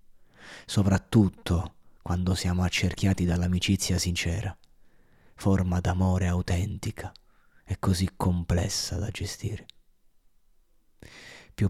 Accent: native